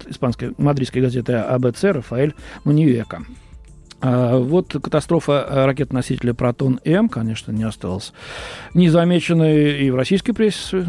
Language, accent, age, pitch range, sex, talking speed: Russian, native, 40-59, 125-170 Hz, male, 105 wpm